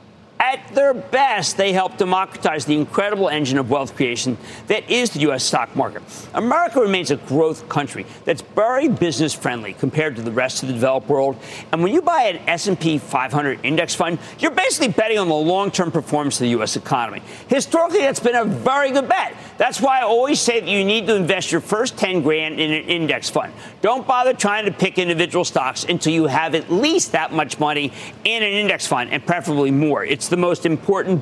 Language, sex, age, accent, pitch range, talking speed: English, male, 50-69, American, 140-205 Hz, 200 wpm